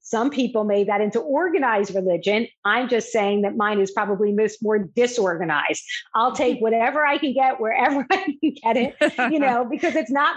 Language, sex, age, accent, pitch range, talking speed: English, female, 50-69, American, 205-270 Hz, 185 wpm